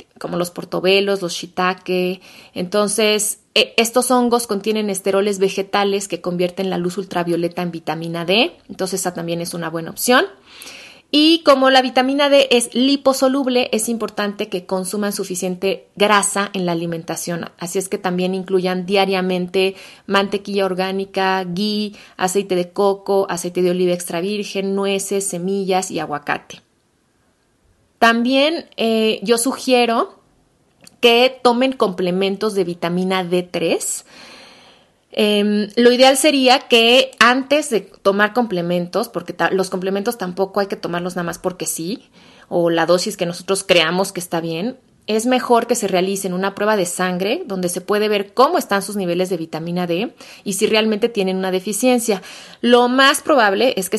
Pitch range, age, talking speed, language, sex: 180-220 Hz, 30-49, 150 wpm, Spanish, female